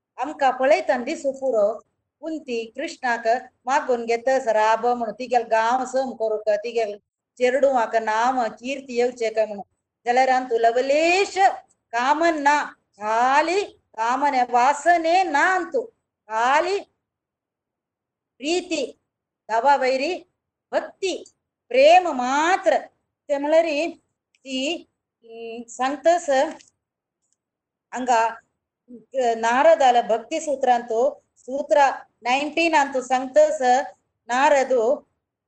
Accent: native